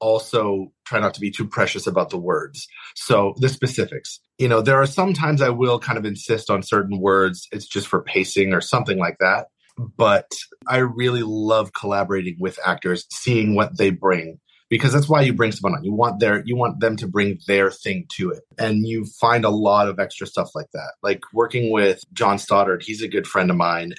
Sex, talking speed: male, 215 wpm